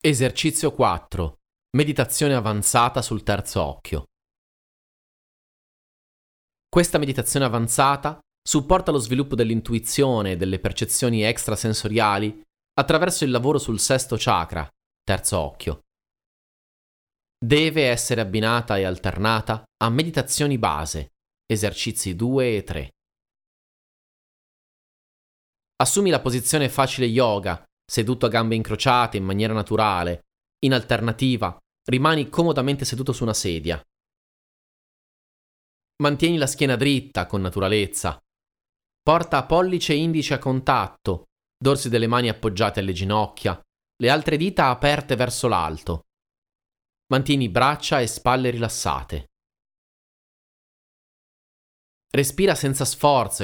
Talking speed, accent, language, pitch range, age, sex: 100 wpm, native, Italian, 100-135 Hz, 30-49, male